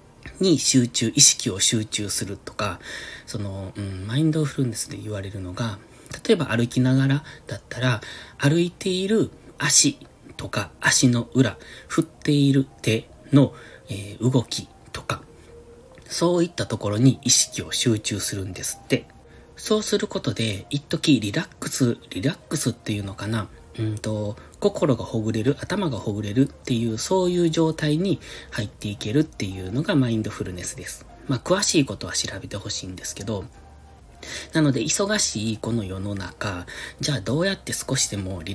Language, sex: Japanese, male